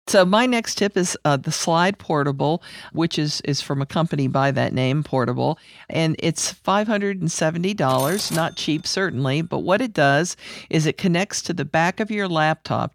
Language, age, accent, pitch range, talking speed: English, 50-69, American, 140-180 Hz, 175 wpm